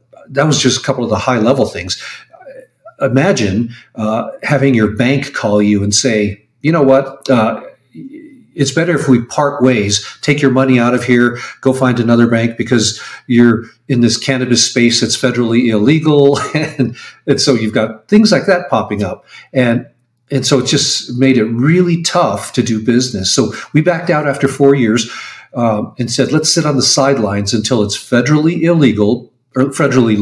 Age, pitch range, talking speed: 50-69, 110-140 Hz, 180 wpm